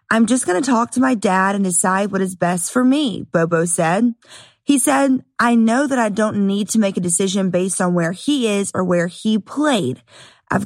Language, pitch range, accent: English, 190-250 Hz, American